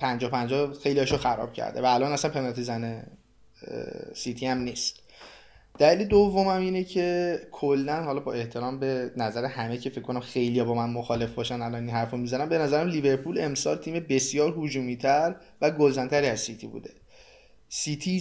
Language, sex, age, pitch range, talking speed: Persian, male, 20-39, 120-155 Hz, 170 wpm